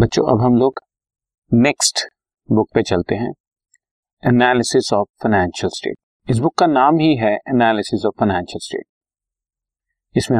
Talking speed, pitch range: 140 wpm, 100-125 Hz